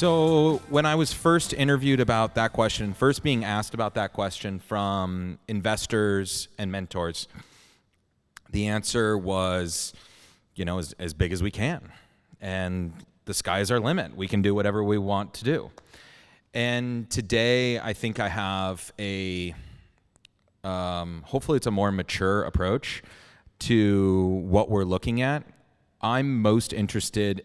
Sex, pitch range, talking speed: male, 95-115 Hz, 145 wpm